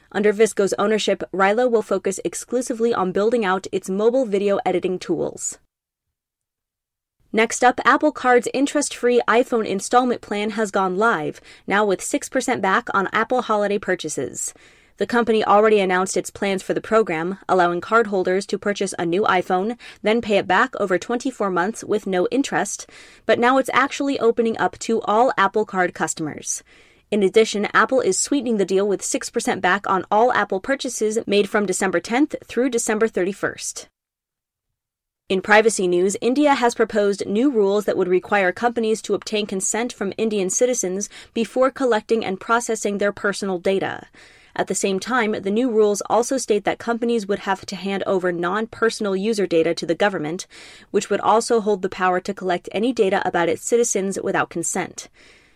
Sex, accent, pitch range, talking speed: female, American, 190-230 Hz, 165 wpm